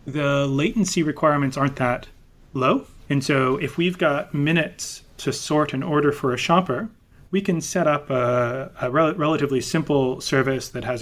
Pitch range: 125-150 Hz